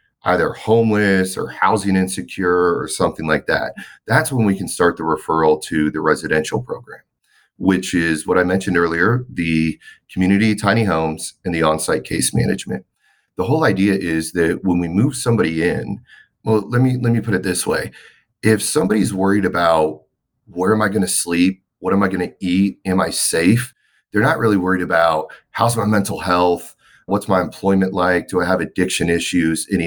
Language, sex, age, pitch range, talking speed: English, male, 30-49, 90-110 Hz, 180 wpm